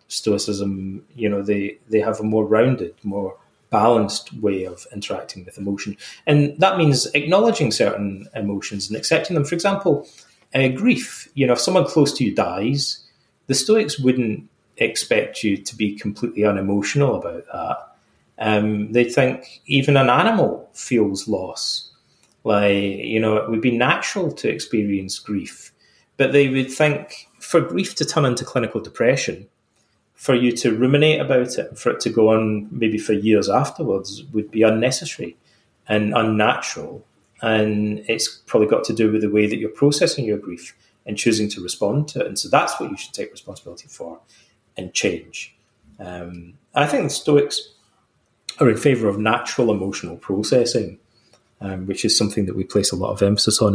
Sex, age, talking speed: male, 30-49, 170 wpm